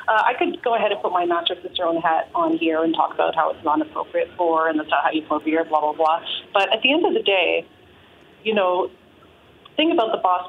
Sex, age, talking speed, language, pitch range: female, 30-49, 265 wpm, English, 180-245 Hz